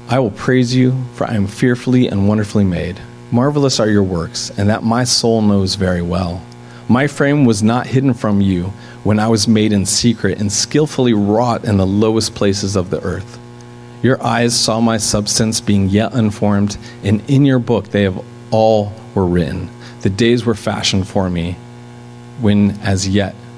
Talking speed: 180 wpm